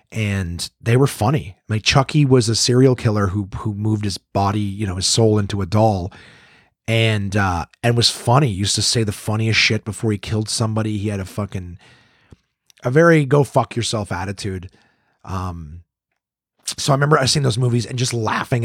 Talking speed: 190 wpm